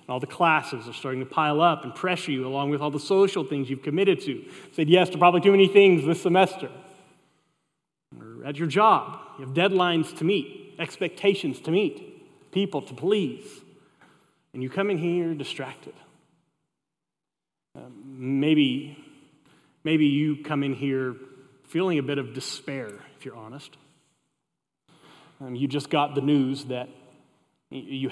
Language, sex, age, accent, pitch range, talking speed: English, male, 30-49, American, 140-165 Hz, 160 wpm